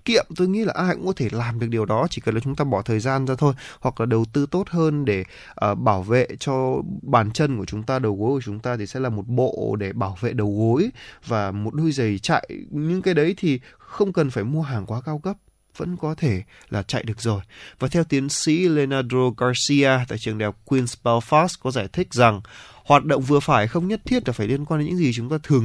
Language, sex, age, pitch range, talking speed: Vietnamese, male, 20-39, 115-155 Hz, 255 wpm